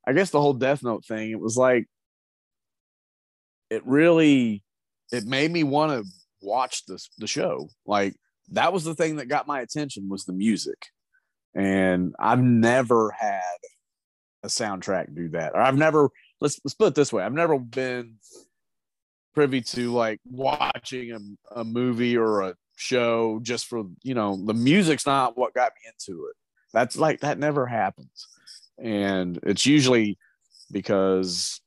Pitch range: 95-130 Hz